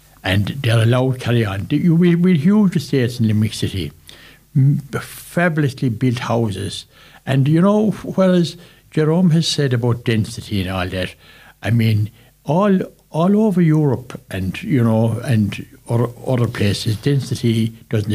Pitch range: 110-135 Hz